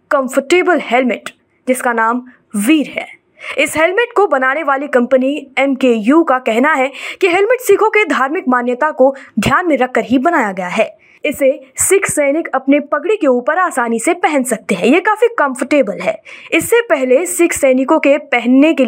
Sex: female